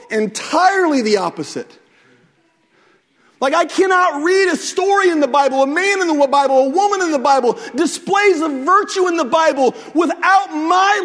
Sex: male